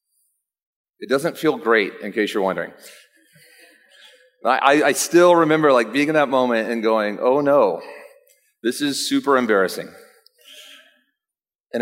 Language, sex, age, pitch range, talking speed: English, male, 40-59, 125-195 Hz, 130 wpm